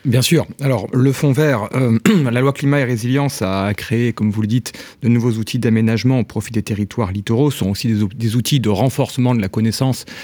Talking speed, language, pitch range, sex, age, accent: 215 wpm, French, 110-135 Hz, male, 40-59, French